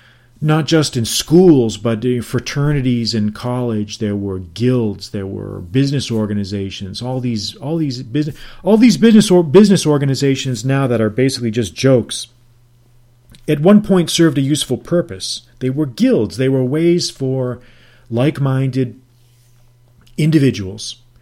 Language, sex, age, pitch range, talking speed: English, male, 40-59, 110-130 Hz, 140 wpm